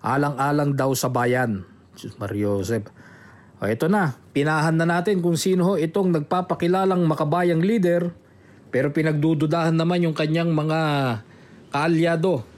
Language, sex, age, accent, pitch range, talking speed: English, male, 20-39, Filipino, 125-165 Hz, 115 wpm